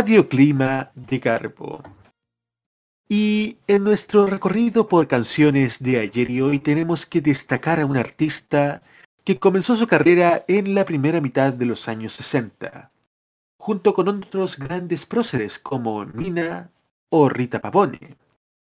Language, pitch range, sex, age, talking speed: Spanish, 125-180 Hz, male, 40-59, 130 wpm